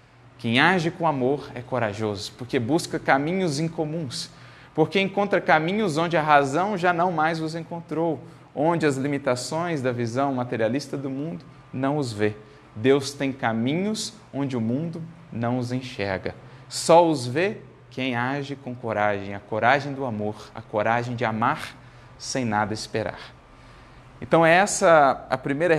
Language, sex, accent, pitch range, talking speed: Portuguese, male, Brazilian, 120-155 Hz, 150 wpm